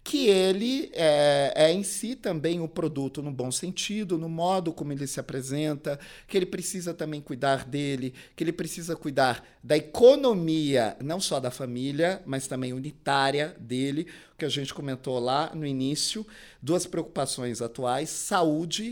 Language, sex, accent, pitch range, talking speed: Portuguese, male, Brazilian, 135-185 Hz, 155 wpm